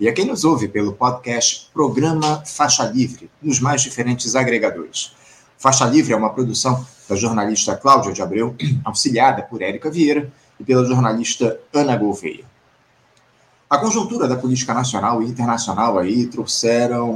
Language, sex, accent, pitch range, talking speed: Portuguese, male, Brazilian, 110-135 Hz, 145 wpm